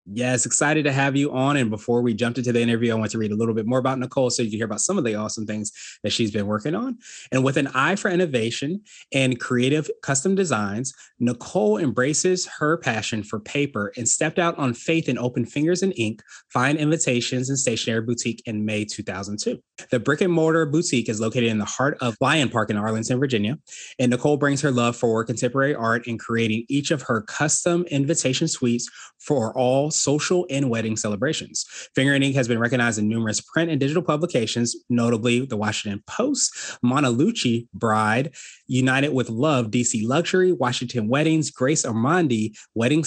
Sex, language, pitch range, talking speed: male, English, 115-150 Hz, 190 wpm